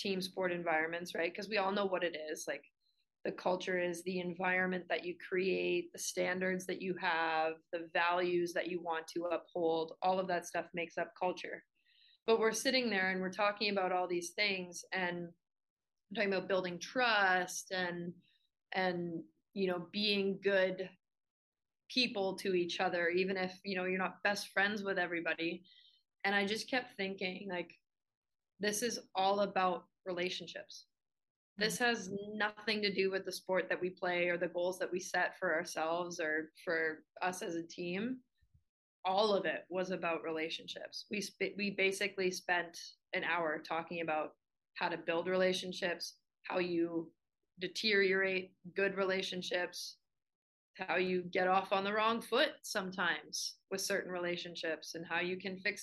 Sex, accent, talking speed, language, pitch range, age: female, American, 165 wpm, English, 175-195 Hz, 20-39